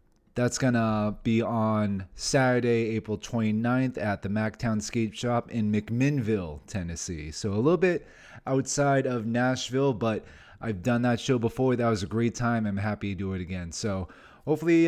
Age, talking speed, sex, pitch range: 30-49, 175 wpm, male, 100-125 Hz